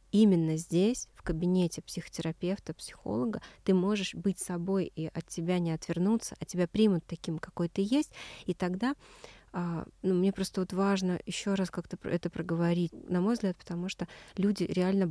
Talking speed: 165 wpm